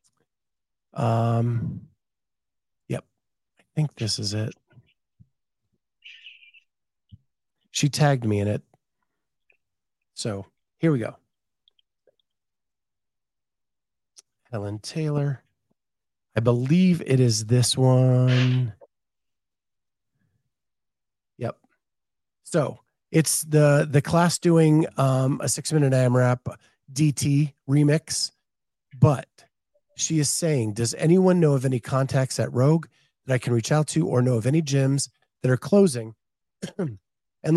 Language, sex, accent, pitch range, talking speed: English, male, American, 120-155 Hz, 105 wpm